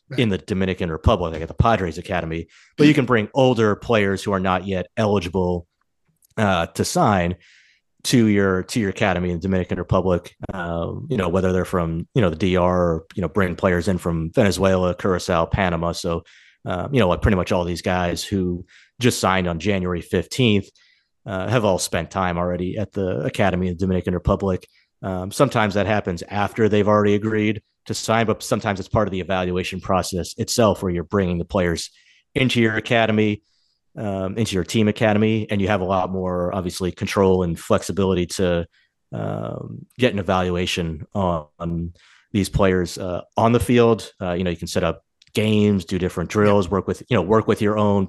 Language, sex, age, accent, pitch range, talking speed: English, male, 30-49, American, 90-105 Hz, 190 wpm